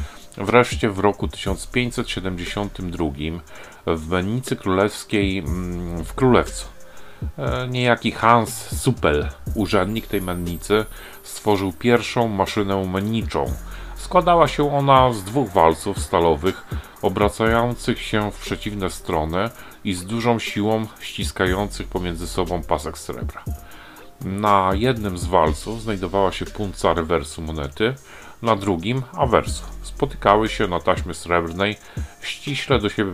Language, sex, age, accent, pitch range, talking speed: Polish, male, 40-59, native, 85-110 Hz, 110 wpm